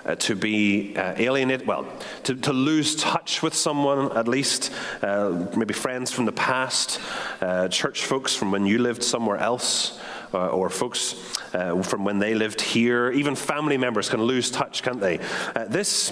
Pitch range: 105-130 Hz